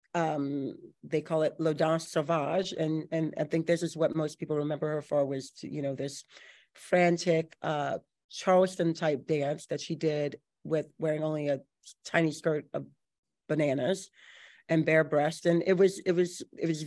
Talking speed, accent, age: 180 wpm, American, 40-59